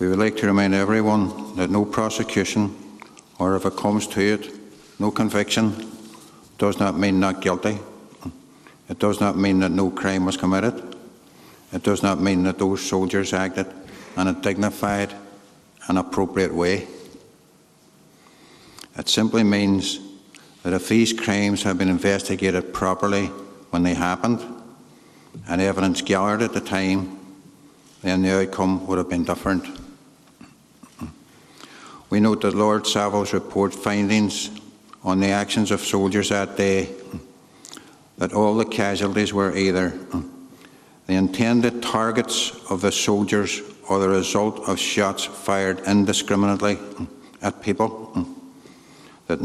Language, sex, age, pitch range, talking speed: English, male, 60-79, 95-105 Hz, 130 wpm